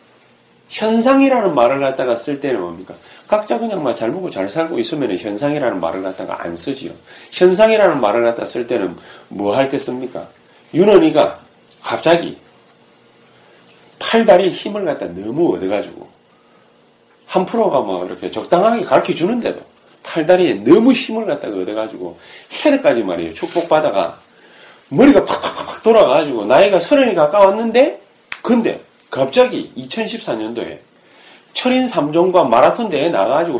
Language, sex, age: Korean, male, 40-59